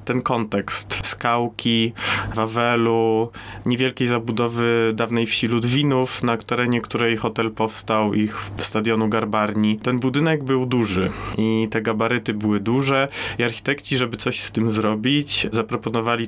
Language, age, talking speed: Polish, 30-49, 130 wpm